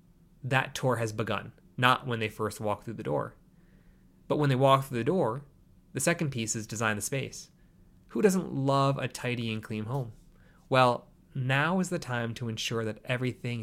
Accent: American